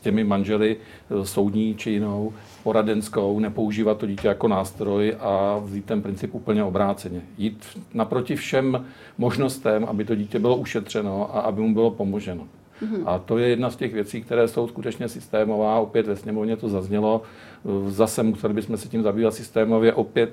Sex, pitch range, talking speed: male, 105-115 Hz, 165 wpm